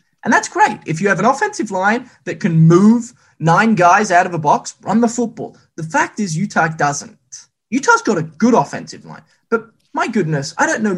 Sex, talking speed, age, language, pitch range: male, 210 wpm, 20-39, English, 160-220 Hz